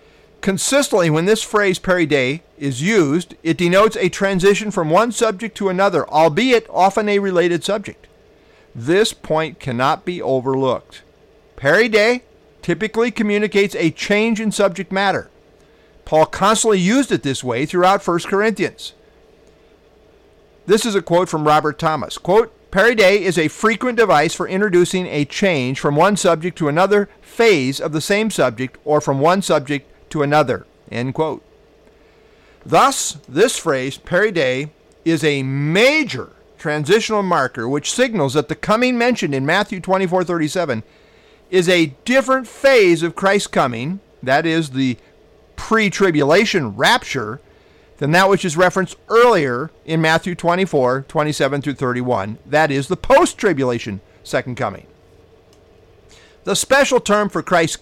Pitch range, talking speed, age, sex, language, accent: 150-210 Hz, 135 wpm, 50-69, male, English, American